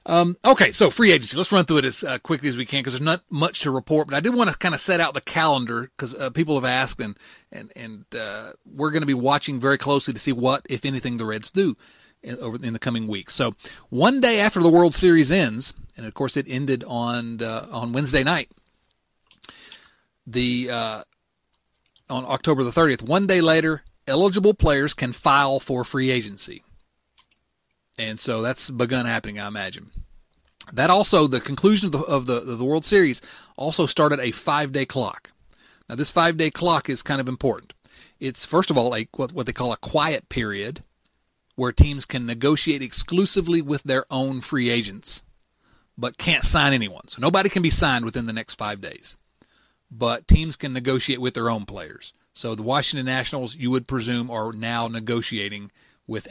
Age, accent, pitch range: 40-59, American, 120-155 Hz